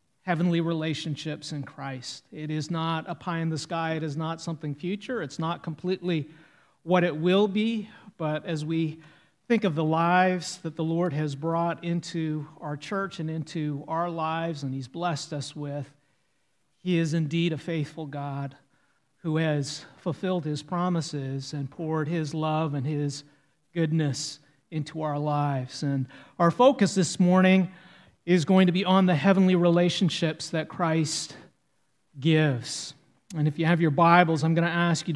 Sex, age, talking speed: male, 40-59, 165 wpm